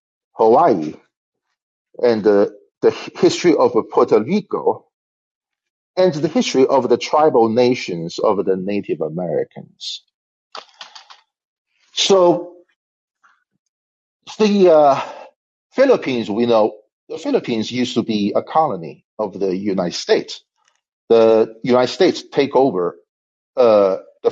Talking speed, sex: 105 wpm, male